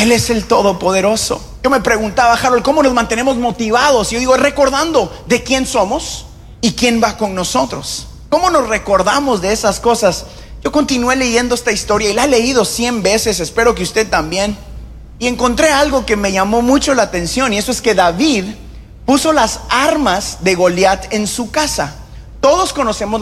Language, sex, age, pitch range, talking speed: Spanish, male, 30-49, 205-265 Hz, 180 wpm